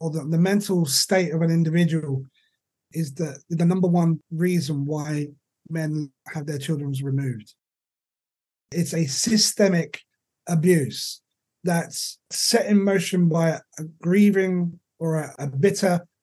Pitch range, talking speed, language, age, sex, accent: 155-180 Hz, 130 wpm, English, 30-49, male, British